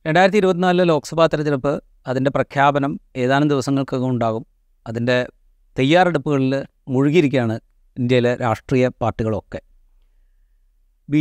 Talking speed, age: 85 wpm, 30-49